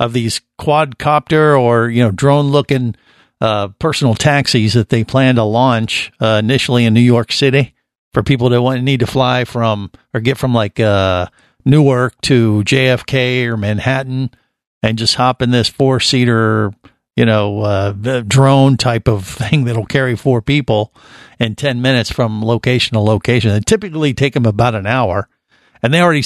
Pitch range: 115-140 Hz